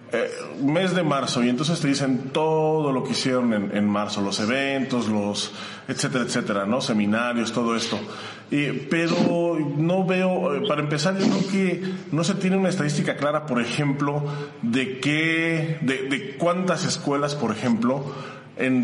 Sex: male